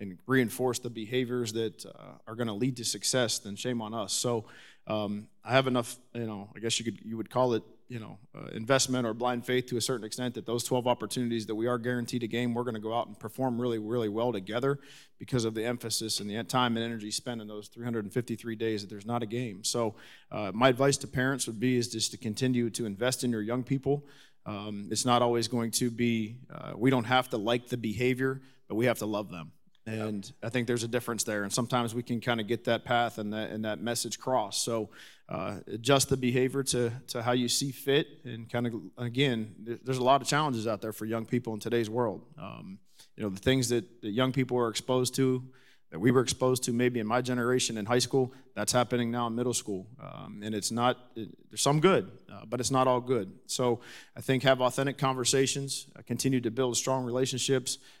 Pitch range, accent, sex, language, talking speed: 115-130 Hz, American, male, English, 235 wpm